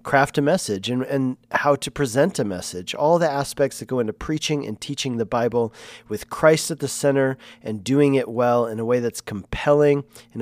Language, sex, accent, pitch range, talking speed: English, male, American, 120-145 Hz, 205 wpm